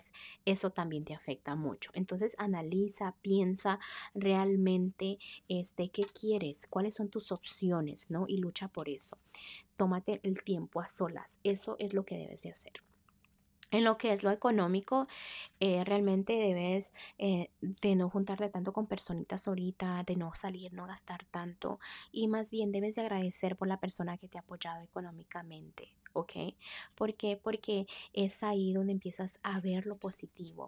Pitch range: 180-205 Hz